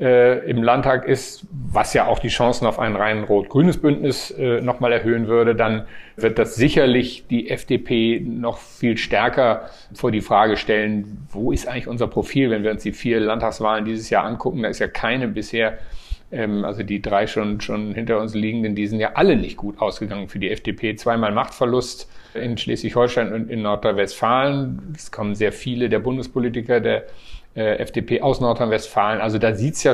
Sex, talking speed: male, 180 wpm